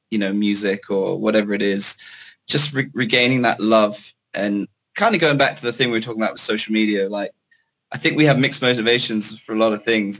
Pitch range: 105-120 Hz